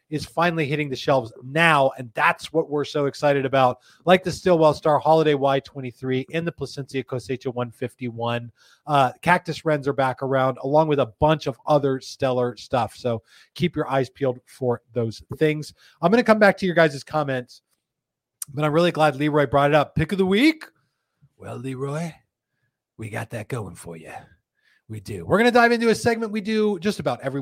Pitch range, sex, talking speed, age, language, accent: 130-175 Hz, male, 195 wpm, 30-49, English, American